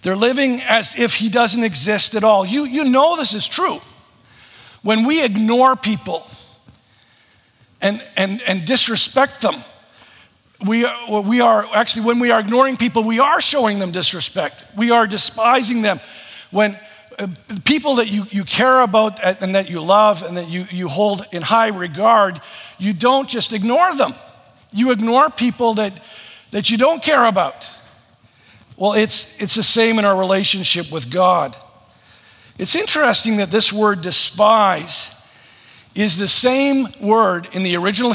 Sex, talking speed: male, 155 wpm